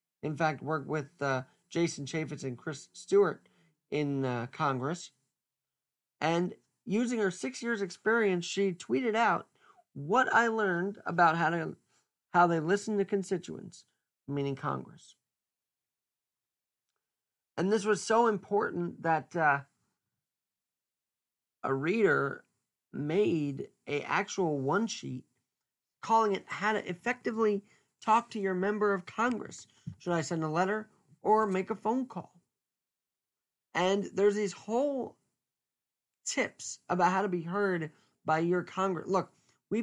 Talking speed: 130 wpm